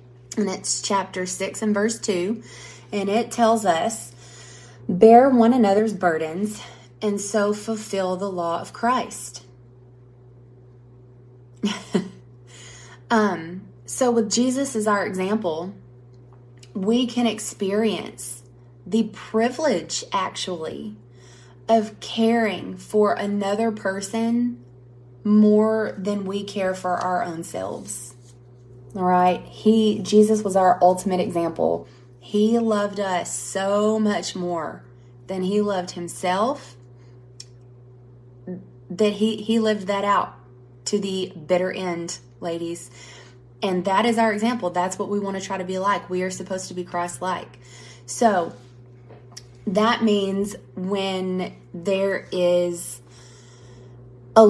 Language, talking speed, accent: English, 115 wpm, American